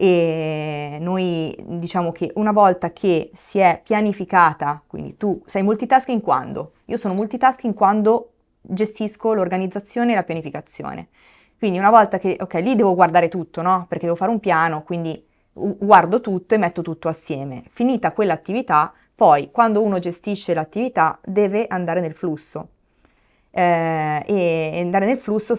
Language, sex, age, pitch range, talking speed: Italian, female, 20-39, 170-205 Hz, 145 wpm